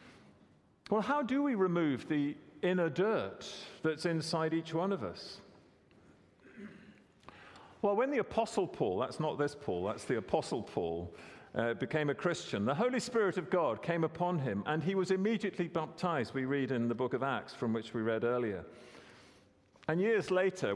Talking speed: 170 wpm